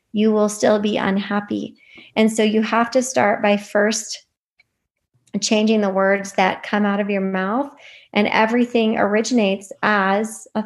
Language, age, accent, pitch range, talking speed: English, 30-49, American, 200-225 Hz, 150 wpm